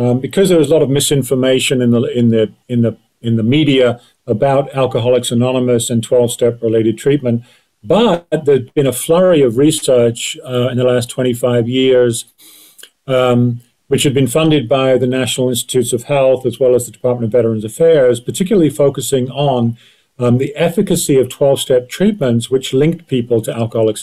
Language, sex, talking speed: English, male, 175 wpm